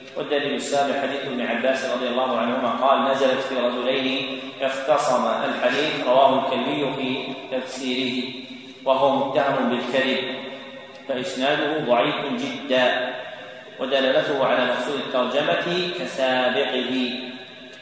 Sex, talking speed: male, 100 wpm